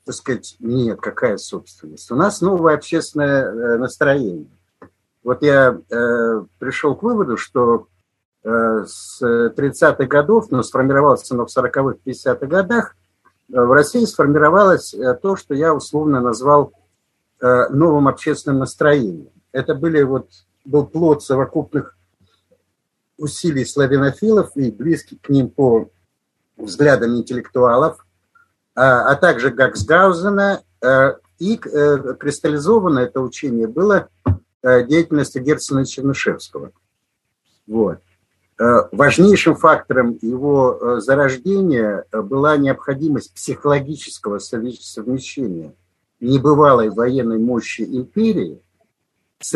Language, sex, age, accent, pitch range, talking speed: Russian, male, 60-79, native, 120-150 Hz, 100 wpm